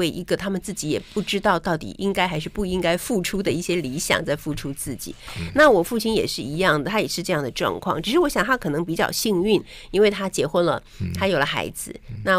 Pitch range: 160-210 Hz